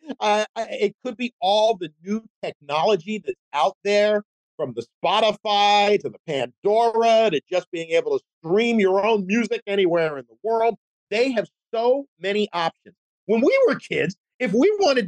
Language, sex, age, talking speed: English, male, 50-69, 165 wpm